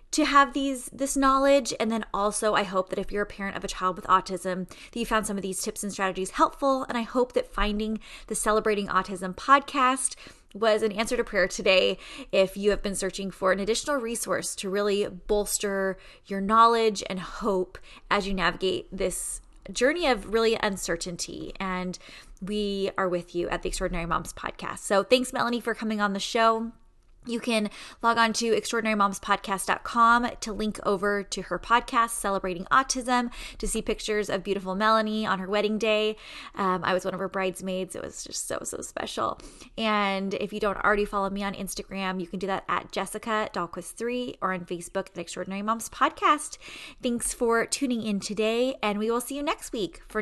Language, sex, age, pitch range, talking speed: English, female, 20-39, 190-235 Hz, 190 wpm